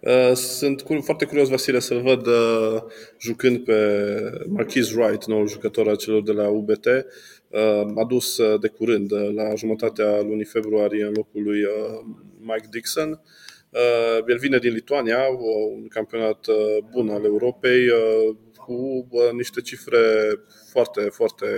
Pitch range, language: 110-125 Hz, Romanian